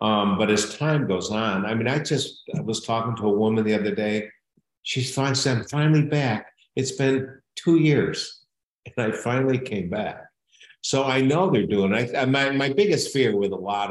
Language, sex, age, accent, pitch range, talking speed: English, male, 60-79, American, 100-130 Hz, 195 wpm